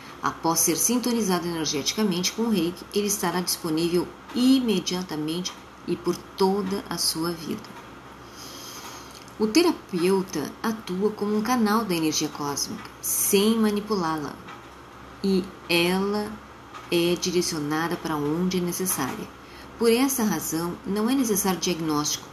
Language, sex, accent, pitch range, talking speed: Portuguese, female, Brazilian, 160-200 Hz, 115 wpm